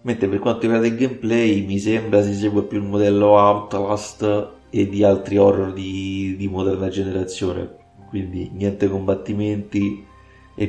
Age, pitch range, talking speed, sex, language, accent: 30-49, 95-105 Hz, 145 wpm, male, Italian, native